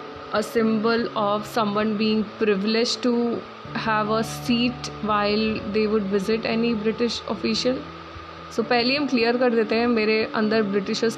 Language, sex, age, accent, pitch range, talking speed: Hindi, female, 20-39, native, 215-250 Hz, 140 wpm